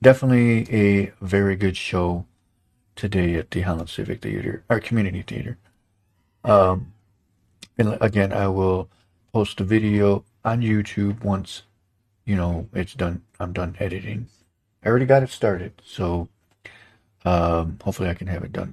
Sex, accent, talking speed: male, American, 145 wpm